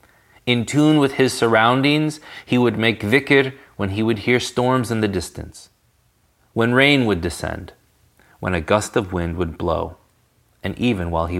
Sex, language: male, English